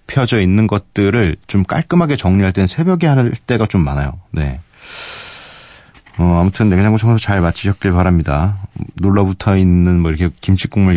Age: 40-59